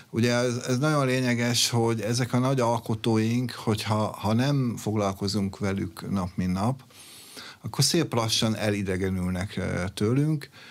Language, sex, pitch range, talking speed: Hungarian, male, 100-120 Hz, 130 wpm